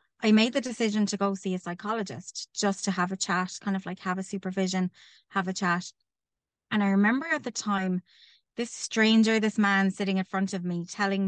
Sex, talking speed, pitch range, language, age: female, 205 wpm, 185-210 Hz, English, 20-39